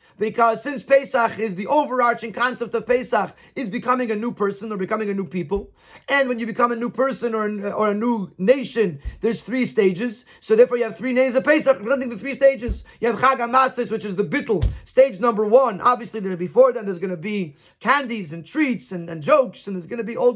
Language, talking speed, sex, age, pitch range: English, 220 wpm, male, 30-49, 205-255 Hz